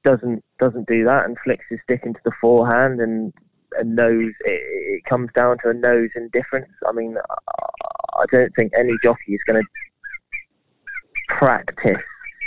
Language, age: English, 20-39